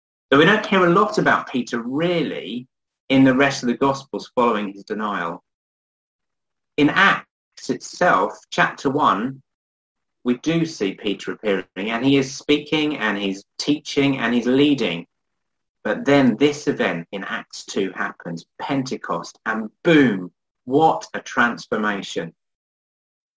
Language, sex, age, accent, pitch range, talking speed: English, male, 30-49, British, 110-145 Hz, 135 wpm